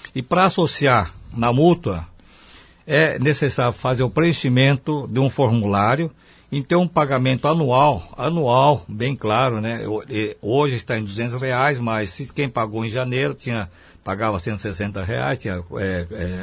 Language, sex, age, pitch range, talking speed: Portuguese, male, 60-79, 105-140 Hz, 140 wpm